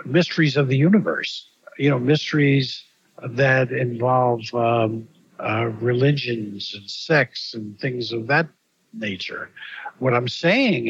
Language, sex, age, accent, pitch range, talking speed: English, male, 60-79, American, 125-160 Hz, 120 wpm